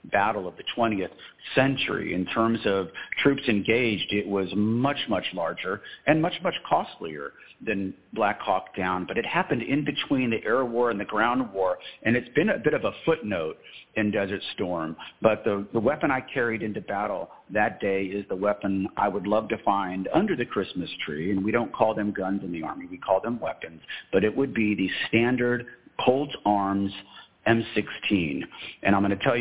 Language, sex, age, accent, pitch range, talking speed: English, male, 50-69, American, 100-120 Hz, 190 wpm